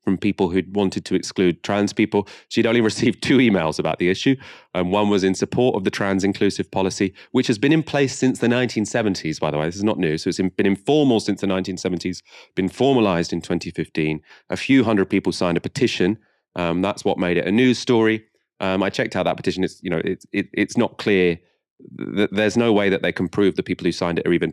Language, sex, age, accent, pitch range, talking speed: English, male, 30-49, British, 90-110 Hz, 220 wpm